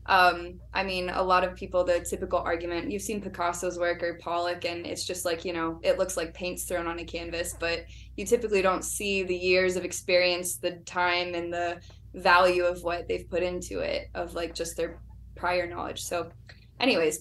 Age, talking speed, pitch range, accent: 10-29, 200 wpm, 170-190 Hz, American